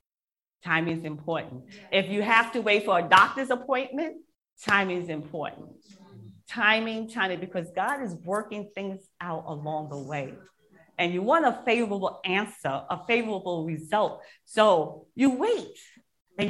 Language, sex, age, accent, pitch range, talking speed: English, female, 40-59, American, 165-220 Hz, 140 wpm